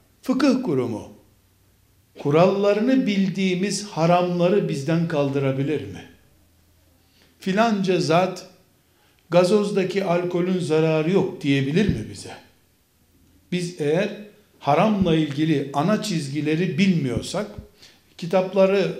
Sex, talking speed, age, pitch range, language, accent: male, 80 wpm, 60-79, 150-195 Hz, Turkish, native